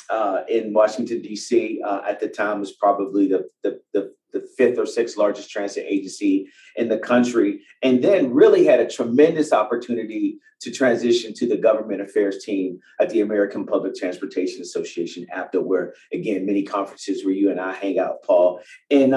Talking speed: 175 wpm